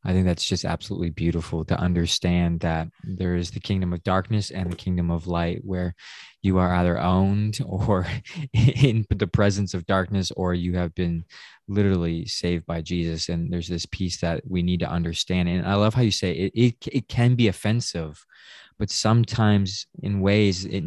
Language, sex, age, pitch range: English, male, 20-39, 90-105 Hz